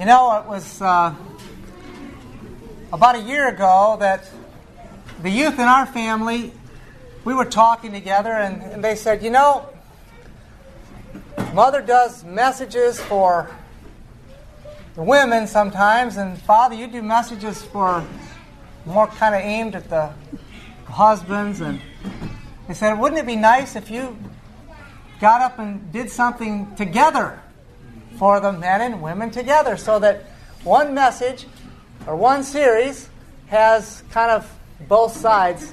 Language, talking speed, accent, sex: English, 130 wpm, American, male